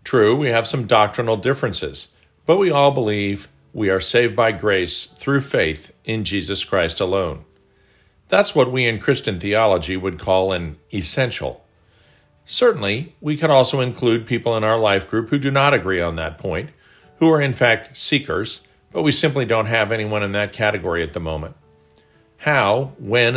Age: 50-69